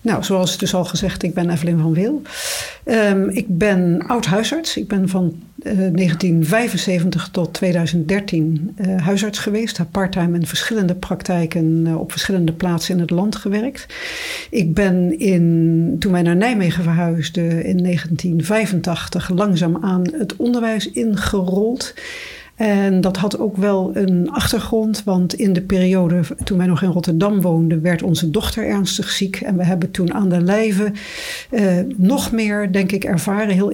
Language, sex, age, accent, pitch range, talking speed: Dutch, female, 60-79, Dutch, 175-205 Hz, 155 wpm